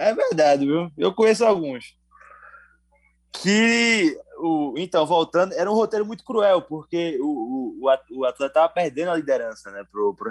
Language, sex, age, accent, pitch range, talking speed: Portuguese, male, 20-39, Brazilian, 110-180 Hz, 155 wpm